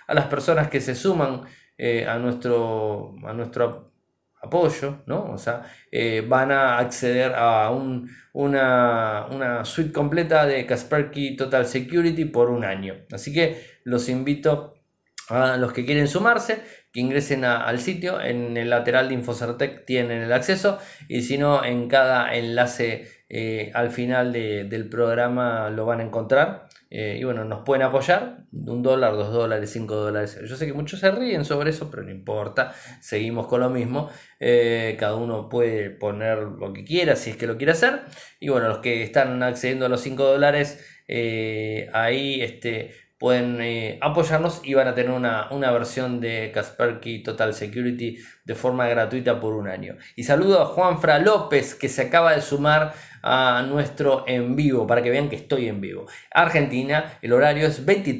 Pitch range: 115-145 Hz